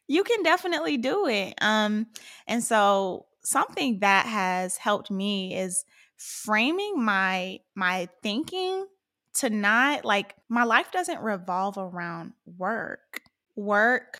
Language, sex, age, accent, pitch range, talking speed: English, female, 10-29, American, 195-245 Hz, 120 wpm